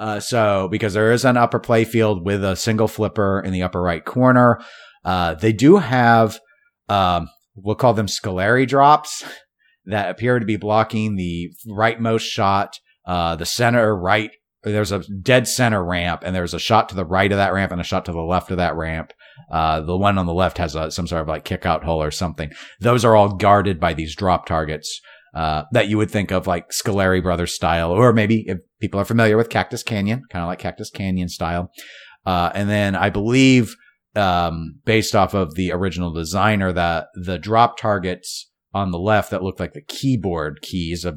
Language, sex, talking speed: English, male, 205 wpm